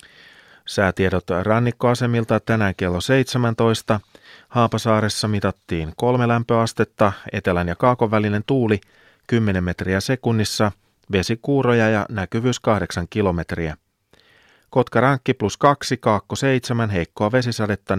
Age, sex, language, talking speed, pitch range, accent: 30-49, male, Finnish, 95 wpm, 95-120 Hz, native